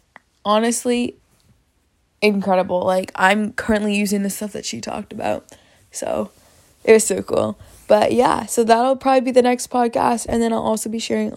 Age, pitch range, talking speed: 20-39, 200-230 Hz, 170 wpm